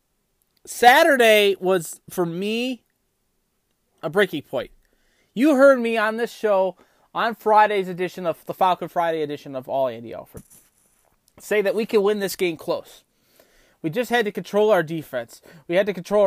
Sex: male